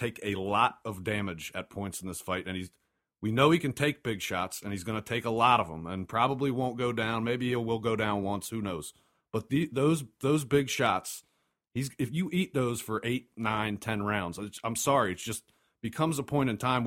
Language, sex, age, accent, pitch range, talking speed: English, male, 40-59, American, 100-135 Hz, 235 wpm